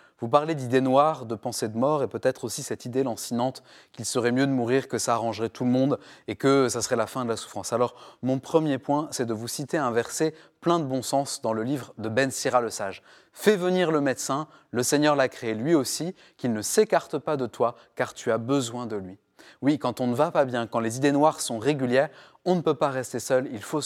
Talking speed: 255 wpm